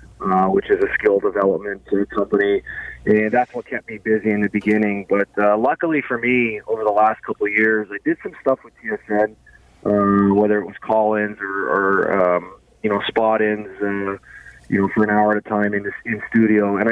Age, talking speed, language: 20-39, 210 wpm, English